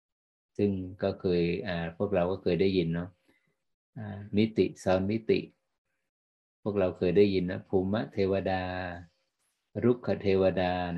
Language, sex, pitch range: Thai, male, 85-105 Hz